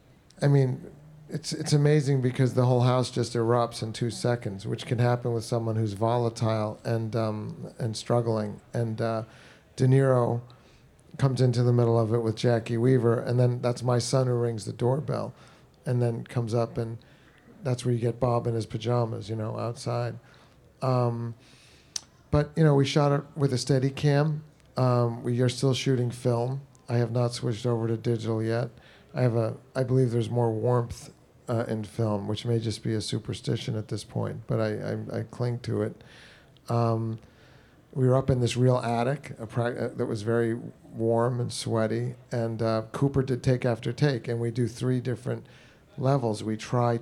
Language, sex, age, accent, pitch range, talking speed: English, male, 40-59, American, 115-130 Hz, 190 wpm